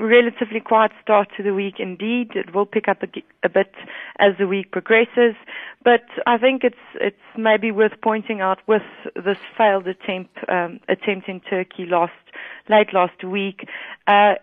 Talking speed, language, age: 165 wpm, English, 30-49